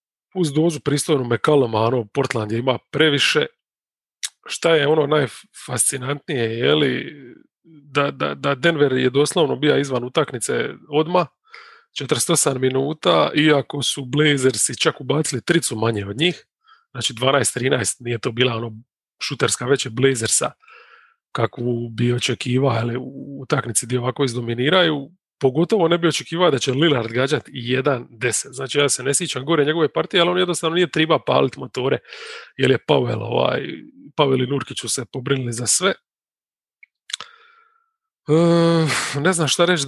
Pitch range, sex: 130-165 Hz, male